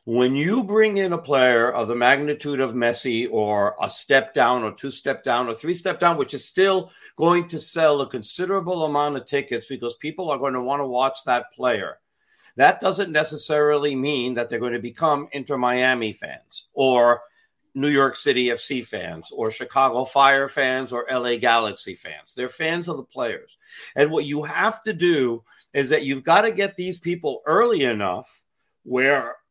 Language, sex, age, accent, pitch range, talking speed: English, male, 50-69, American, 125-165 Hz, 185 wpm